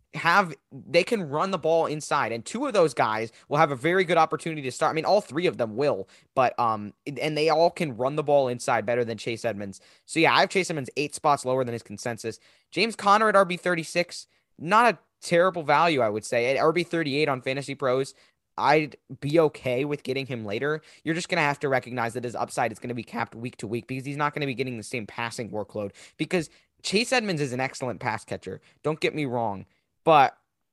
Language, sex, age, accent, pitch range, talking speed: English, male, 20-39, American, 115-155 Hz, 225 wpm